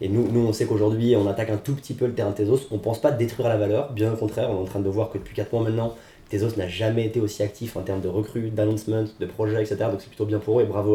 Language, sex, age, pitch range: French, male, 20-39, 100-115 Hz